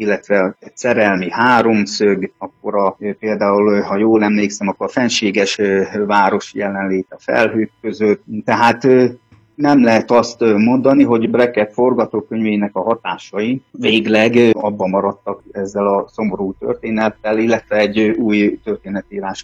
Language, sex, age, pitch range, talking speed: Hungarian, male, 30-49, 100-115 Hz, 120 wpm